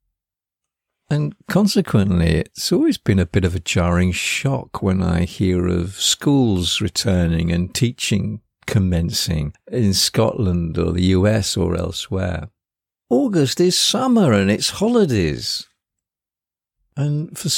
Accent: British